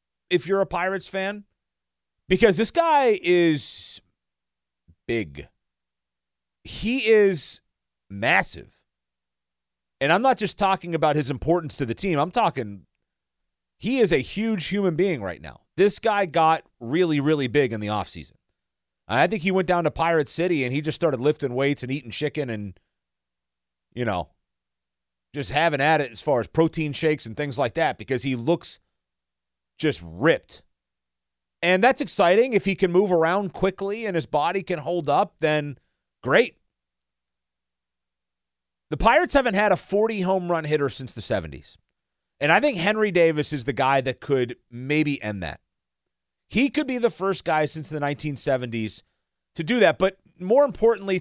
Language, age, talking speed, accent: English, 40-59, 160 wpm, American